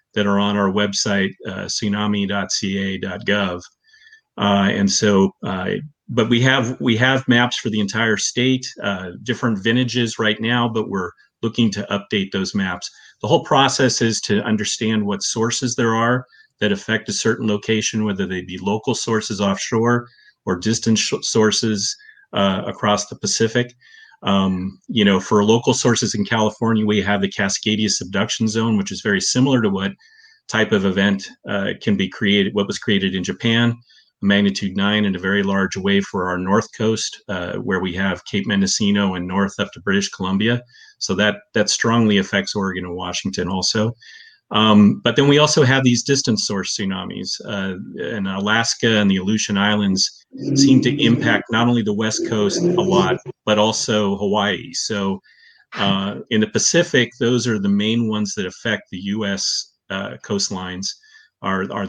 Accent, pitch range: American, 100-120 Hz